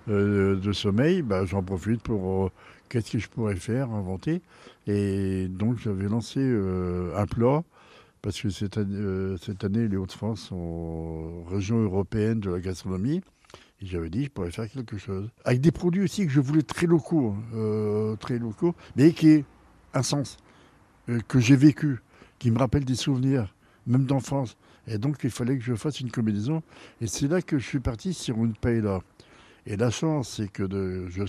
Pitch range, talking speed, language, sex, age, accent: 100-135 Hz, 190 wpm, French, male, 60-79, French